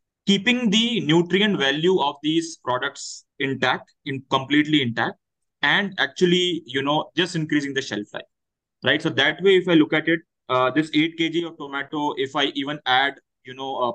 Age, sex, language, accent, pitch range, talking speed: 20-39, male, English, Indian, 140-170 Hz, 180 wpm